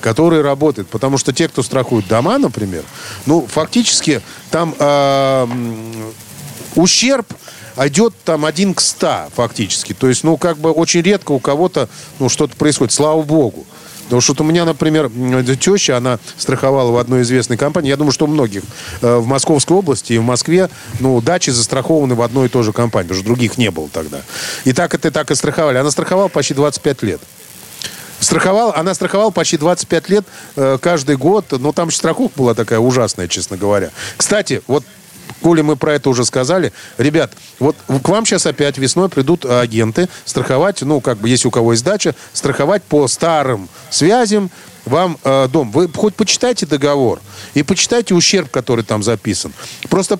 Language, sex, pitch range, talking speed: Russian, male, 125-170 Hz, 175 wpm